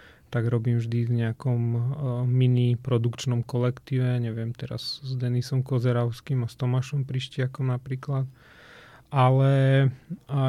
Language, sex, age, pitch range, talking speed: Slovak, male, 30-49, 125-135 Hz, 120 wpm